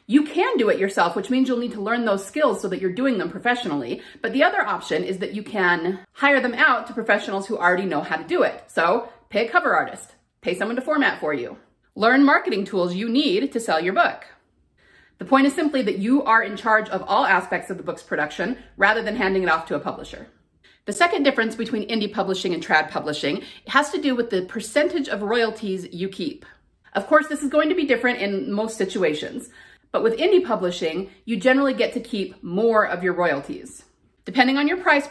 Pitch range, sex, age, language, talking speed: 200-270 Hz, female, 30-49, English, 225 wpm